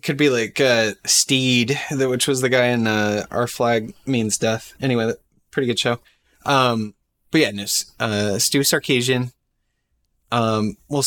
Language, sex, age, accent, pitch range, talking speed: English, male, 20-39, American, 105-130 Hz, 145 wpm